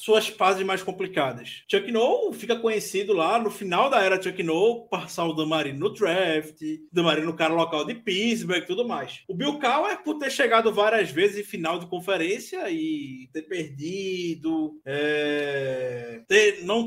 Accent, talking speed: Brazilian, 170 wpm